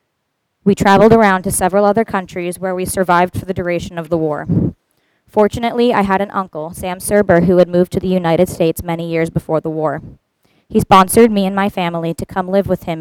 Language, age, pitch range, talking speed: English, 20-39, 165-195 Hz, 210 wpm